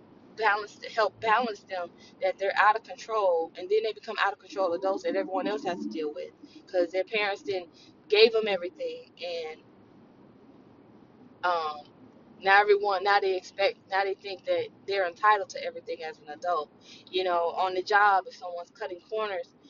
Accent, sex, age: American, female, 20-39